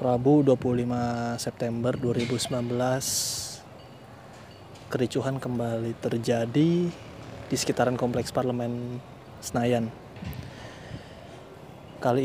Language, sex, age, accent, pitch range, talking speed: Indonesian, male, 20-39, native, 120-135 Hz, 65 wpm